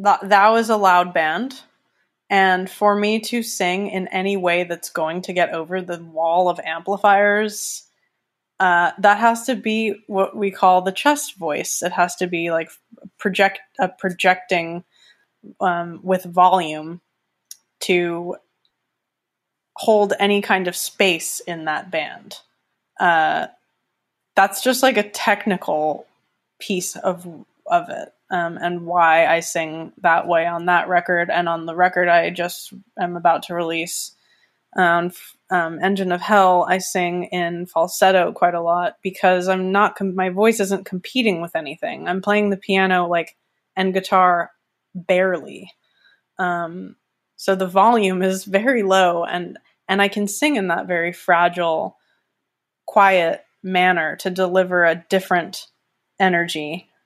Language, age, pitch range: English, 20-39, 175-200 Hz